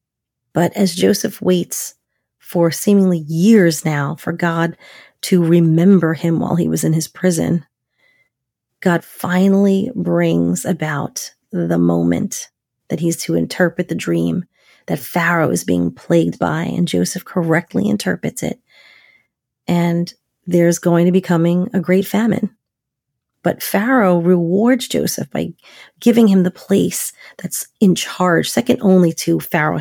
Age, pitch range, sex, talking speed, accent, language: 30-49, 155-185 Hz, female, 135 wpm, American, English